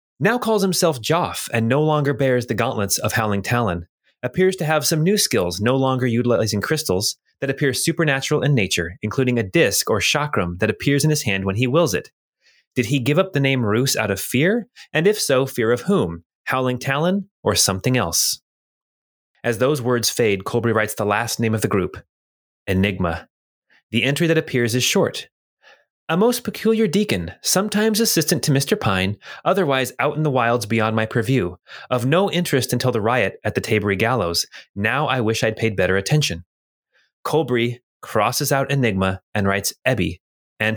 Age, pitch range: 30-49, 105-145 Hz